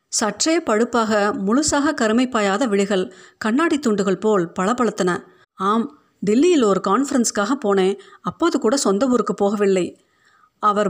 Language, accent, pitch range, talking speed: Tamil, native, 195-255 Hz, 105 wpm